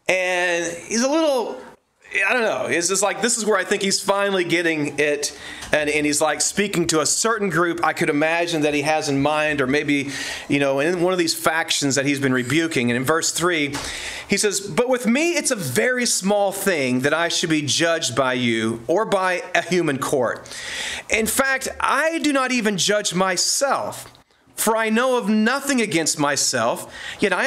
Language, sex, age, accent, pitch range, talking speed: English, male, 40-59, American, 150-210 Hz, 200 wpm